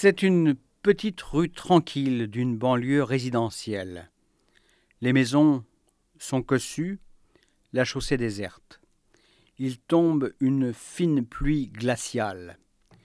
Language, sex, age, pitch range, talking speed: French, male, 50-69, 110-145 Hz, 95 wpm